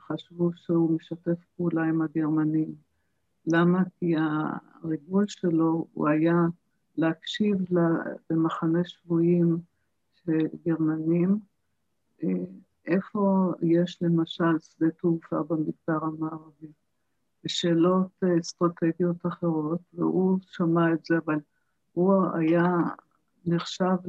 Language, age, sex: Hebrew, 50-69, female